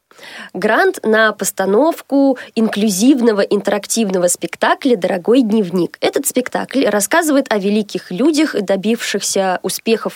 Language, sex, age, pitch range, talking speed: Russian, female, 20-39, 200-260 Hz, 95 wpm